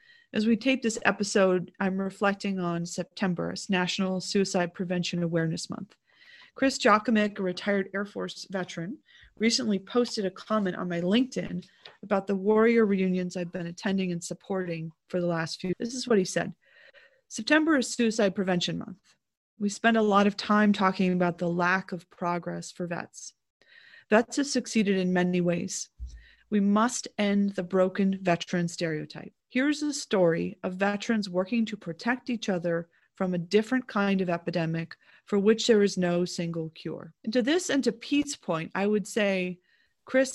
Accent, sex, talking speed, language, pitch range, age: American, female, 165 wpm, English, 180-225 Hz, 30-49